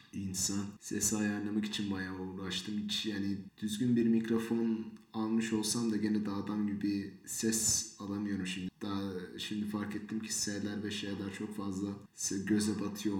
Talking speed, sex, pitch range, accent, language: 150 wpm, male, 95-115 Hz, native, Turkish